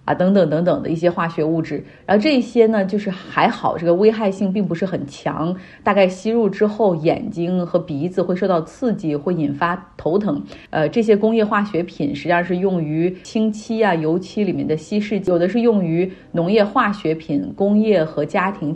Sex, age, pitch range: female, 30-49, 165-210 Hz